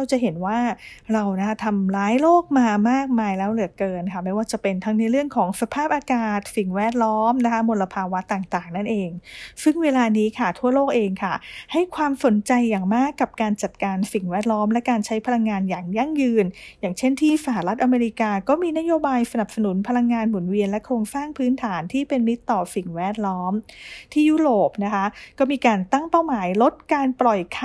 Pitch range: 200-260 Hz